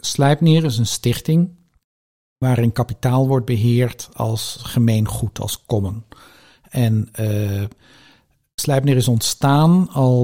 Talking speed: 105 wpm